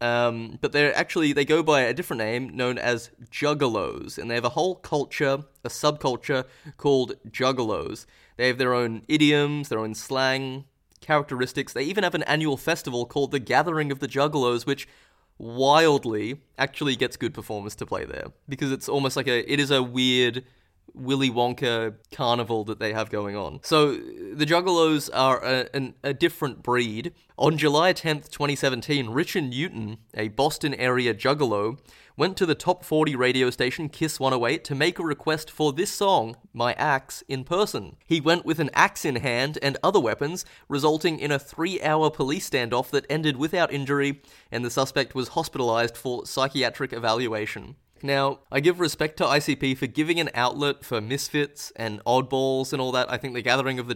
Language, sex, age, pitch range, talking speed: English, male, 20-39, 125-150 Hz, 175 wpm